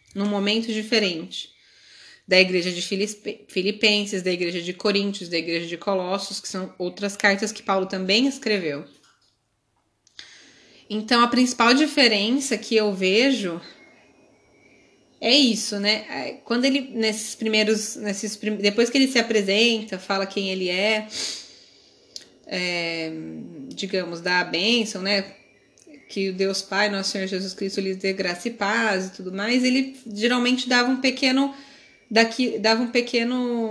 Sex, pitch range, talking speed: female, 190-235 Hz, 135 wpm